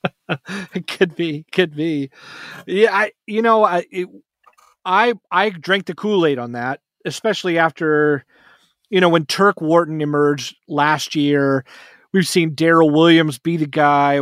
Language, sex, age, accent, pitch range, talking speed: English, male, 30-49, American, 145-180 Hz, 145 wpm